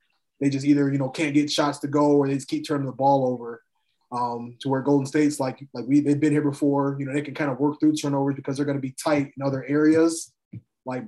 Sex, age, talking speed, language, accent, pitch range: male, 20-39, 260 wpm, English, American, 130-150 Hz